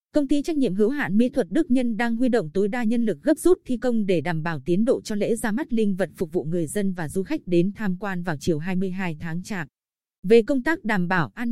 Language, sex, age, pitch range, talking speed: Vietnamese, female, 20-39, 190-245 Hz, 275 wpm